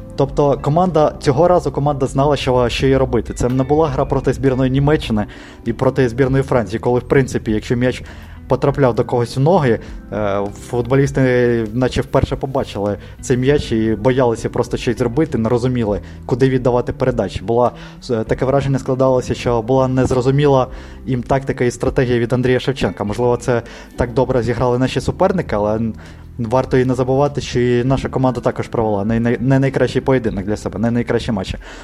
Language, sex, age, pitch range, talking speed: Ukrainian, male, 20-39, 120-140 Hz, 165 wpm